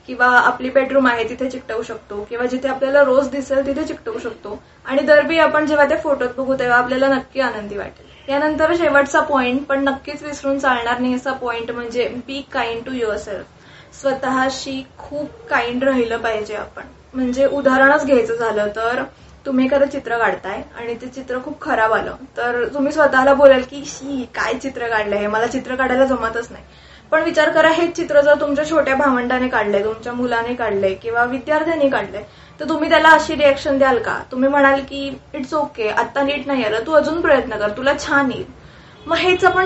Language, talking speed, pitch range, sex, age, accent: Marathi, 165 wpm, 240-285 Hz, female, 20-39, native